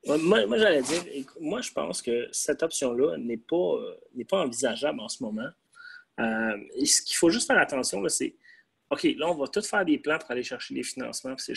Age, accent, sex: 30-49, Canadian, male